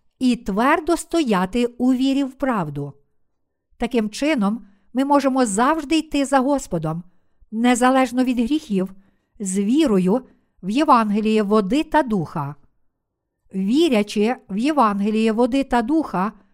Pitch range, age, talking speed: 210-275 Hz, 50-69, 115 wpm